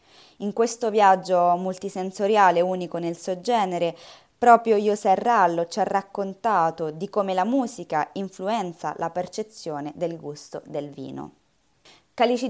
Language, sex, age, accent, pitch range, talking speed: Italian, female, 20-39, native, 165-205 Hz, 125 wpm